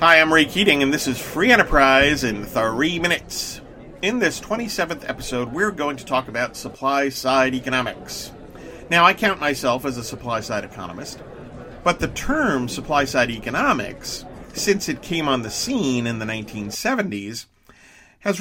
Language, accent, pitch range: English, American, 110-155 Hz